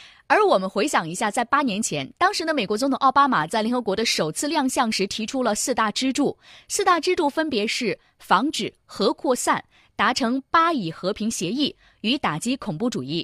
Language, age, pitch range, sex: Chinese, 20-39, 200-285 Hz, female